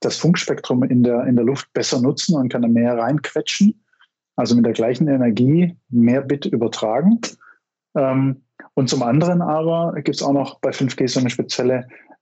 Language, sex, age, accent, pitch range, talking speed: German, male, 50-69, German, 120-140 Hz, 170 wpm